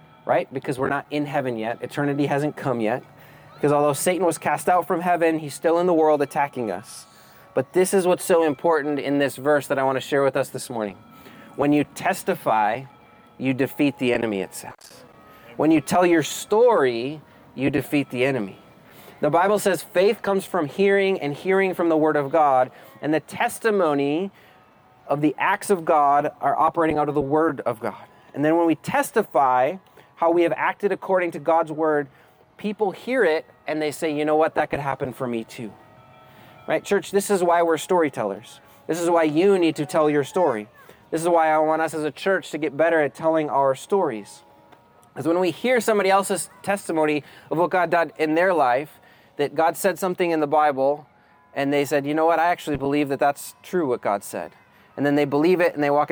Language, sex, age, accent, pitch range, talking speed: English, male, 30-49, American, 140-175 Hz, 210 wpm